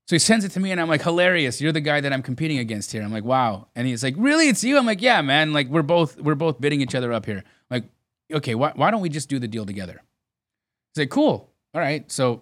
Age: 30-49